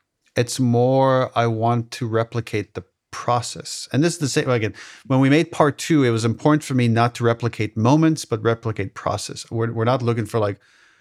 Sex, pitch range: male, 105-125 Hz